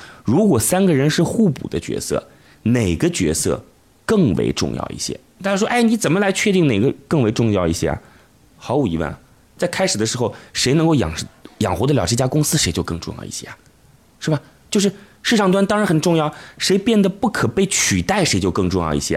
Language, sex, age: Chinese, male, 30-49